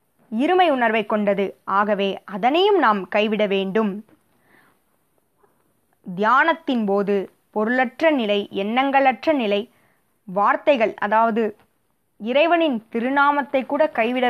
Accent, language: native, Tamil